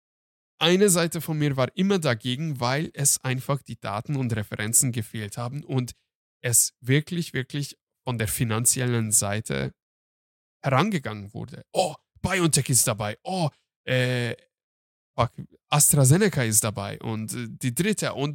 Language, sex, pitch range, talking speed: German, male, 120-175 Hz, 130 wpm